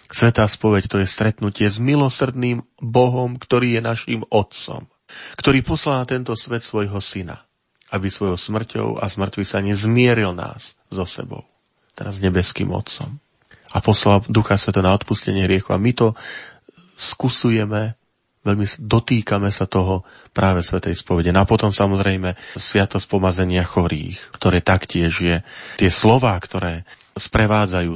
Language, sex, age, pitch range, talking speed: Slovak, male, 30-49, 95-120 Hz, 135 wpm